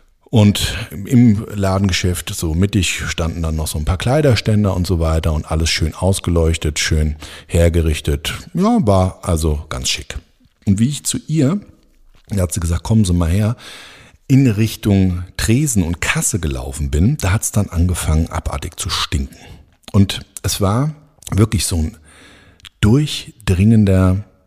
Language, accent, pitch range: German, German, 85-110 Hz